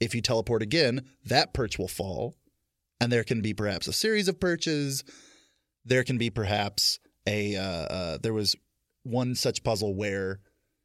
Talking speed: 160 wpm